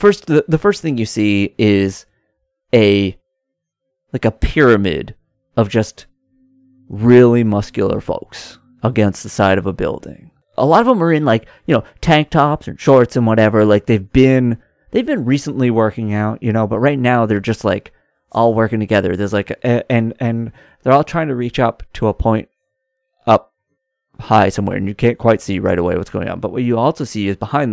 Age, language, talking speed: 30-49, English, 200 wpm